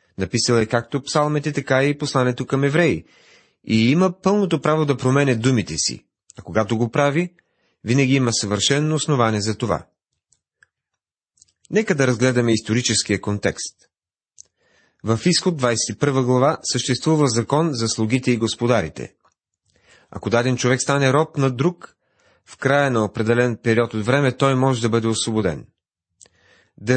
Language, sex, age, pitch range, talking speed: Bulgarian, male, 30-49, 110-140 Hz, 140 wpm